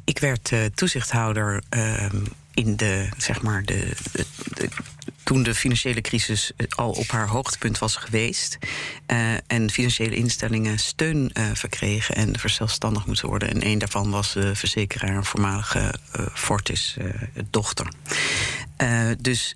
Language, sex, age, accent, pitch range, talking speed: Dutch, female, 50-69, Dutch, 105-125 Hz, 125 wpm